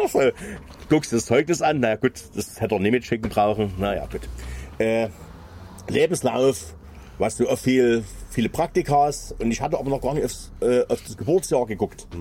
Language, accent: German, German